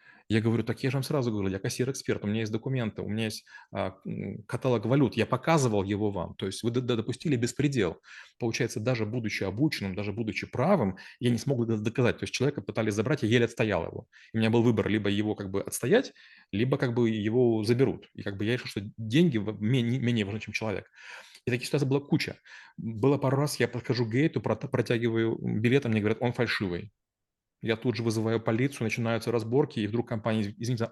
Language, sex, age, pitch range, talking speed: Russian, male, 30-49, 105-125 Hz, 200 wpm